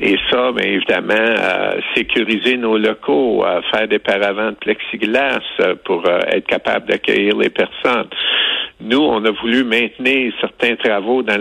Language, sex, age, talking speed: French, male, 70-89, 155 wpm